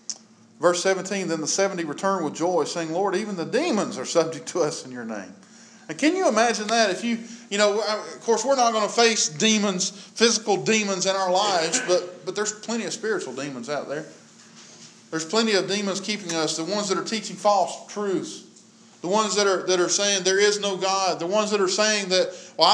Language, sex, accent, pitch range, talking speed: English, male, American, 165-220 Hz, 215 wpm